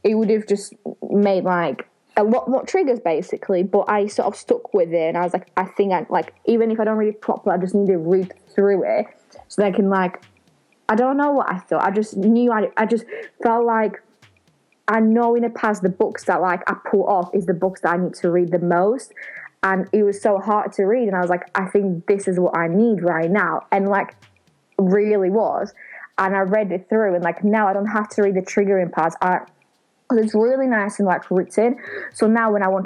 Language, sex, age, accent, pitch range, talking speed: English, female, 20-39, British, 185-215 Hz, 245 wpm